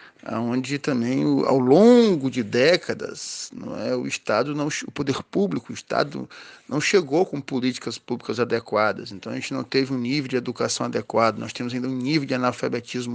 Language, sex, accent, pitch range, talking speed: Portuguese, male, Brazilian, 120-145 Hz, 180 wpm